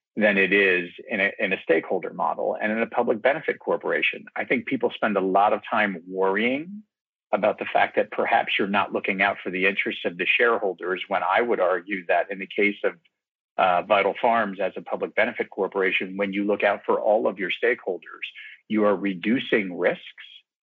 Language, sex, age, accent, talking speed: English, male, 50-69, American, 200 wpm